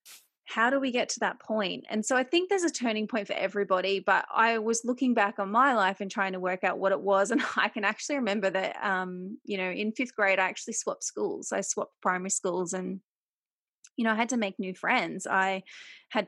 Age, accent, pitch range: 20-39, Australian, 195-245 Hz